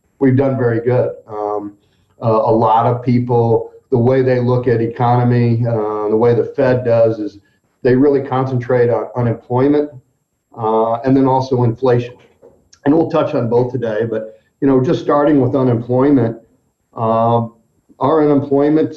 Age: 50-69